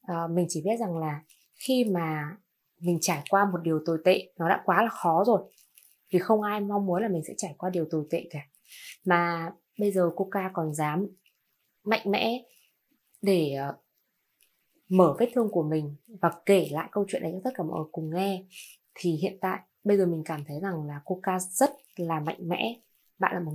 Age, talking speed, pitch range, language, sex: 20-39, 205 wpm, 170-215 Hz, Vietnamese, female